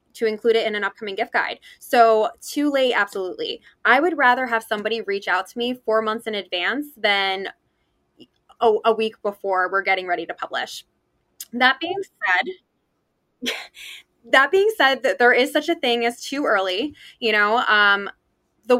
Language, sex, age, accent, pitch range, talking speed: English, female, 20-39, American, 210-285 Hz, 170 wpm